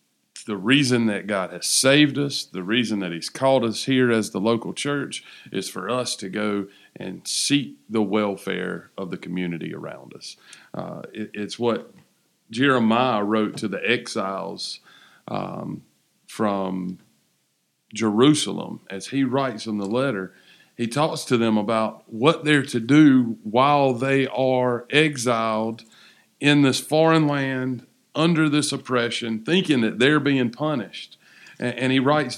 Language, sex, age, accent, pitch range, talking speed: English, male, 40-59, American, 115-145 Hz, 145 wpm